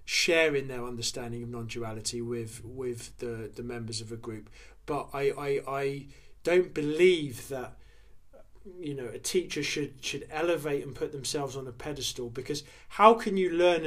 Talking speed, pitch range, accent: 165 wpm, 125-155 Hz, British